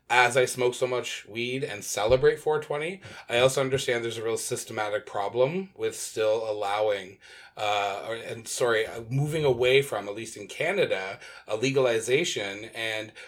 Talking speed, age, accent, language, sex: 155 wpm, 30-49, American, English, male